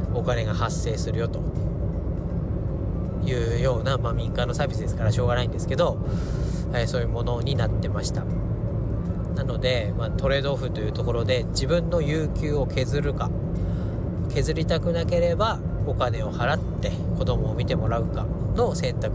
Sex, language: male, Japanese